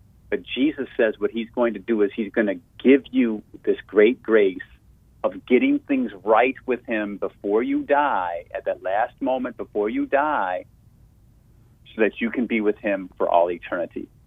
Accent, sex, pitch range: American, male, 105-120 Hz